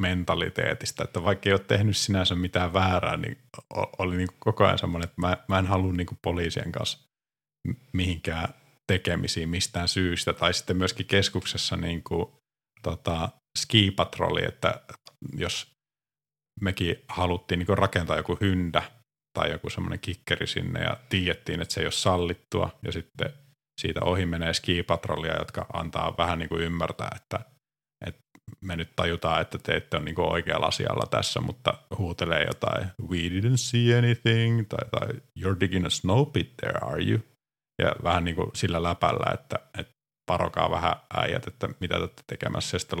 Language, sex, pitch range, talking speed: Finnish, male, 85-115 Hz, 160 wpm